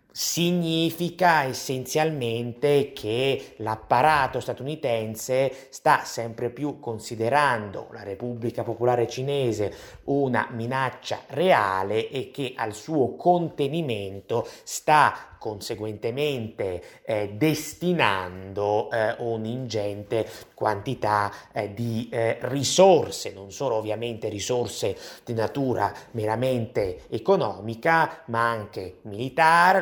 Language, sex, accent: Italian, male, native